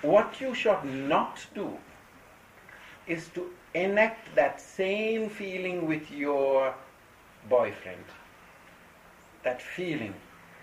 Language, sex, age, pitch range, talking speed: English, male, 60-79, 110-165 Hz, 90 wpm